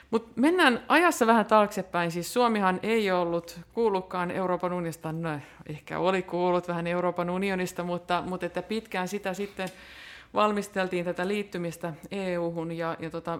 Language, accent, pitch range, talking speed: Finnish, native, 165-190 Hz, 145 wpm